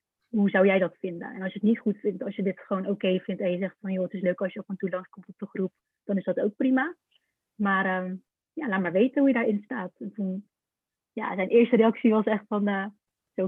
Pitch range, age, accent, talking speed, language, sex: 195-250 Hz, 30-49, Dutch, 270 wpm, Dutch, female